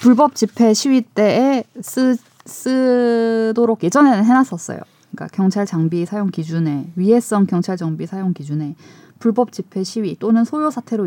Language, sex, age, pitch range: Korean, female, 20-39, 155-225 Hz